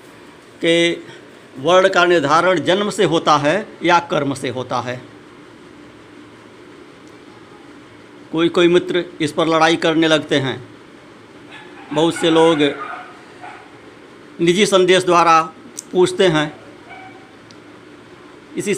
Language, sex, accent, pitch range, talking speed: Hindi, male, native, 155-180 Hz, 95 wpm